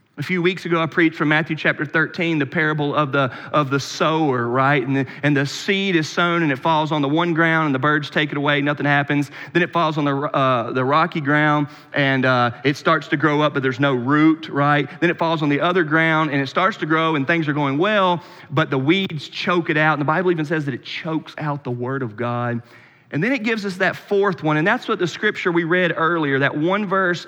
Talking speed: 255 wpm